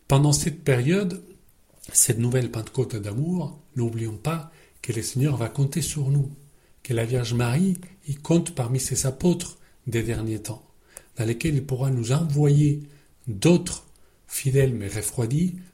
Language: French